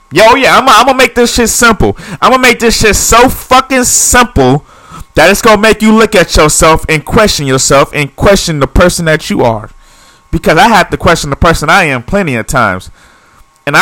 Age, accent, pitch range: 30-49, American, 155-230 Hz